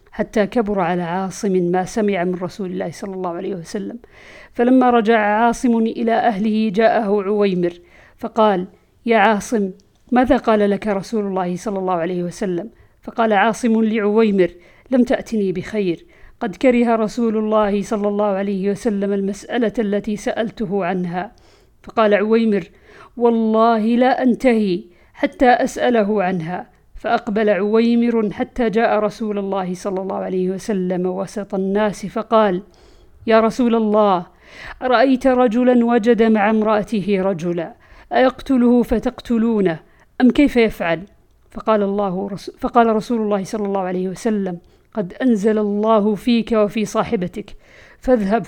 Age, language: 50-69, Arabic